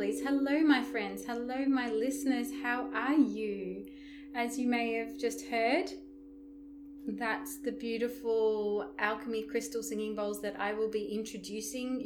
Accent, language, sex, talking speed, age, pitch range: Australian, English, female, 135 wpm, 30-49, 215-275 Hz